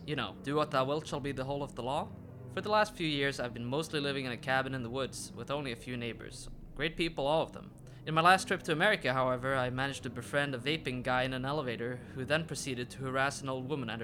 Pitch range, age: 125-165 Hz, 20-39